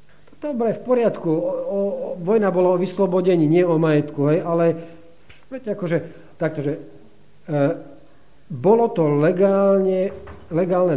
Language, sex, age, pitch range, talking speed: Slovak, male, 50-69, 140-175 Hz, 125 wpm